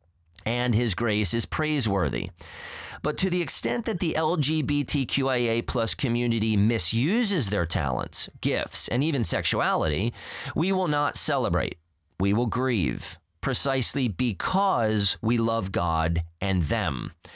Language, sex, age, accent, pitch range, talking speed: English, male, 30-49, American, 105-150 Hz, 120 wpm